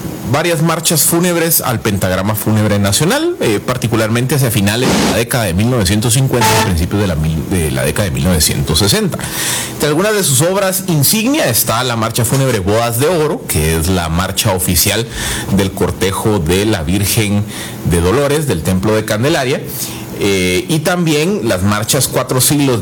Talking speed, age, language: 160 wpm, 40-59, Spanish